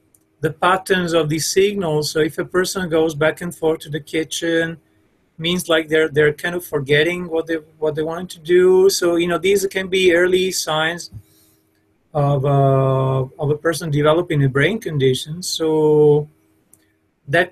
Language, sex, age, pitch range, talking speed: English, male, 30-49, 140-170 Hz, 170 wpm